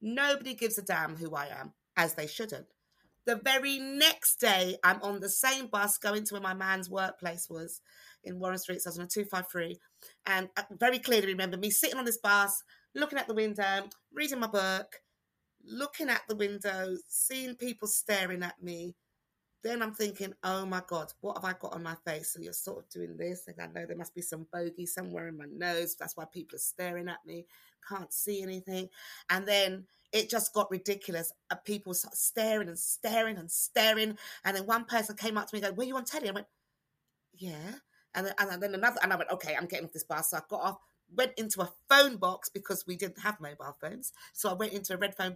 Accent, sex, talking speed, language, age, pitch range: British, female, 220 wpm, English, 30-49, 180-230 Hz